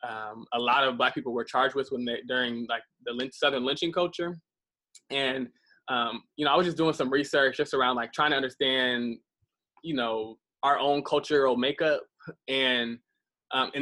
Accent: American